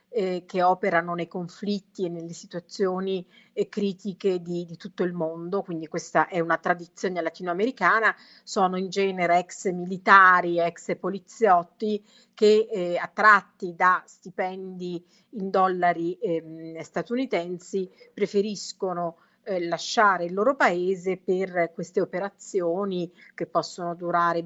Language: Italian